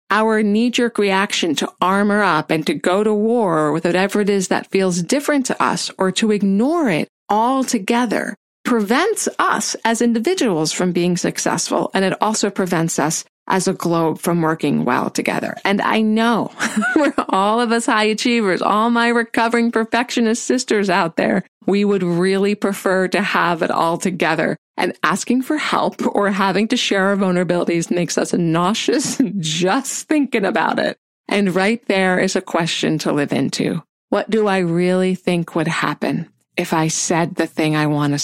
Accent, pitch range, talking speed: American, 175-230 Hz, 175 wpm